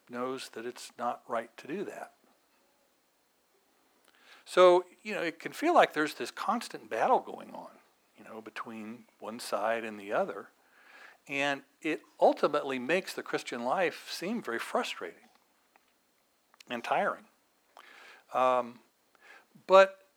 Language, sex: English, male